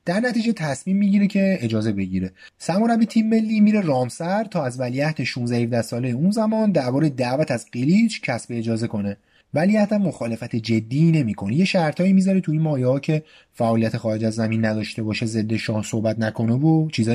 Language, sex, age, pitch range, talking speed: Persian, male, 30-49, 115-180 Hz, 180 wpm